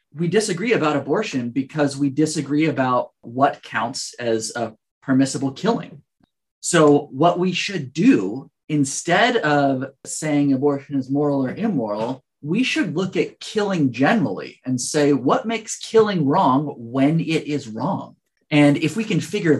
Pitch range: 130-160 Hz